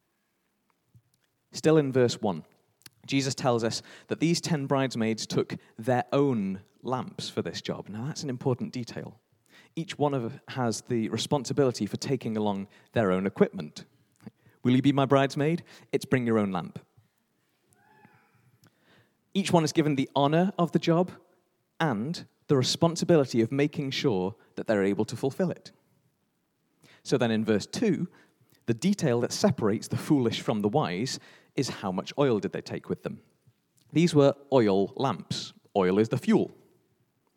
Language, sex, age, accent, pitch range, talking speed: English, male, 40-59, British, 110-150 Hz, 155 wpm